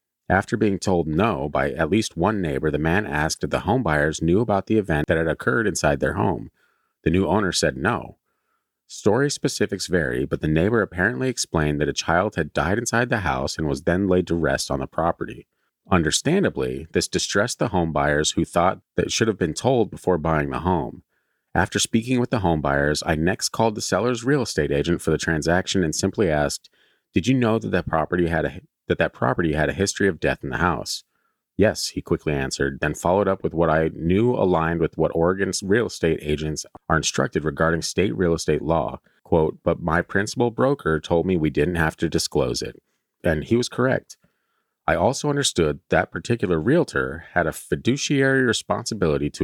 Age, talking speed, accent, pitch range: 30-49, 200 wpm, American, 75-105 Hz